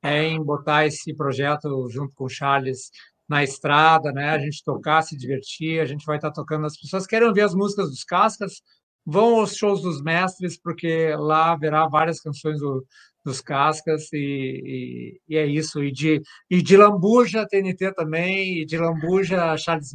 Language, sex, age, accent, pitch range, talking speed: Portuguese, male, 60-79, Brazilian, 155-195 Hz, 180 wpm